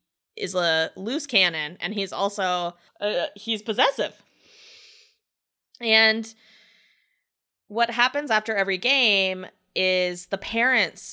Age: 20-39